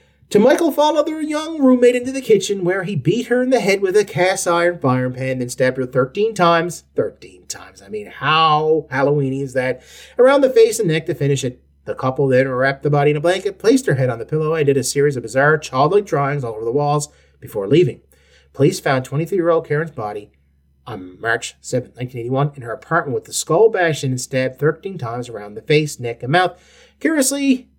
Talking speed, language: 215 wpm, English